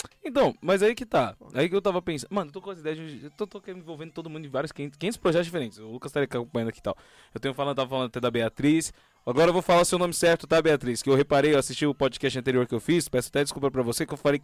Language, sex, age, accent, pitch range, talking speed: Portuguese, male, 20-39, Brazilian, 125-170 Hz, 300 wpm